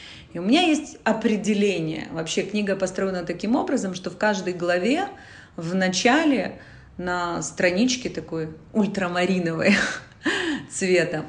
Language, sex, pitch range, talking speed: Russian, female, 175-240 Hz, 110 wpm